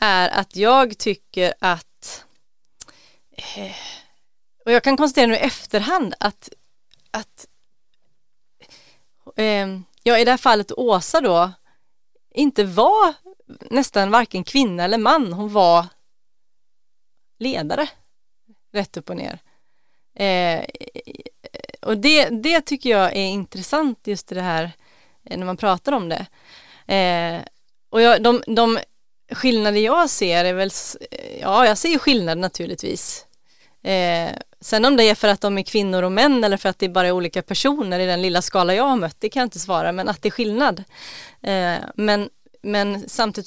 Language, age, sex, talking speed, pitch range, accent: English, 30-49, female, 145 wpm, 185-250 Hz, Swedish